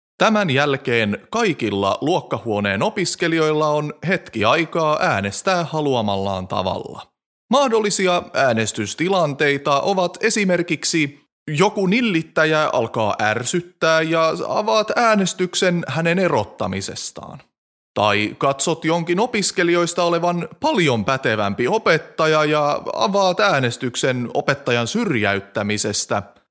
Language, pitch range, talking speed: Finnish, 120-180 Hz, 85 wpm